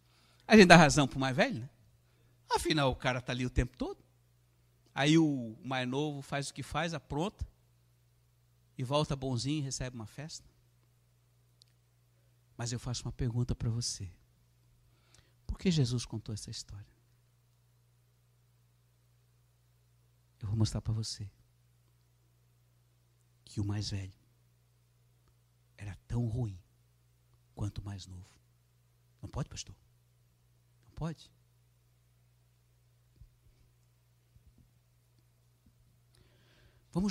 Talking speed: 105 wpm